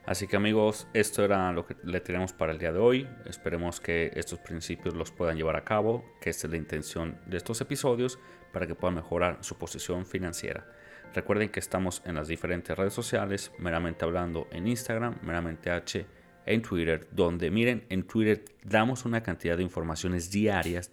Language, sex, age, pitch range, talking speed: Spanish, male, 30-49, 85-105 Hz, 185 wpm